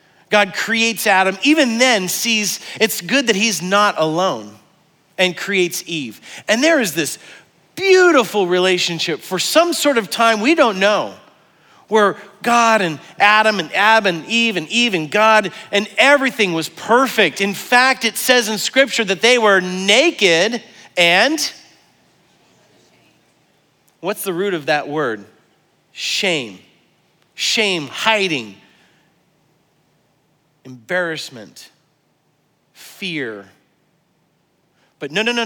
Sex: male